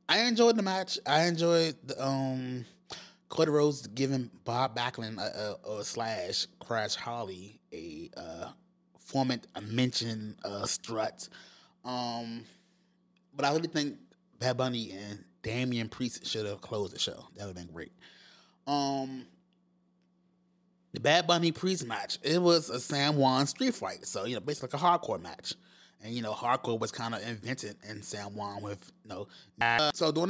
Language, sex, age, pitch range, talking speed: English, male, 20-39, 115-170 Hz, 165 wpm